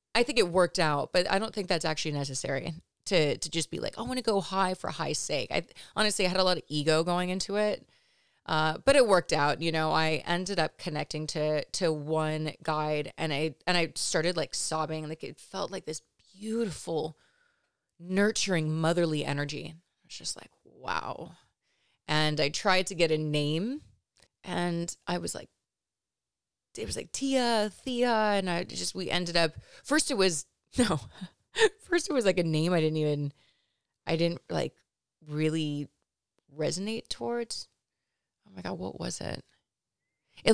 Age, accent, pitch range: 30-49, American, 155-205 Hz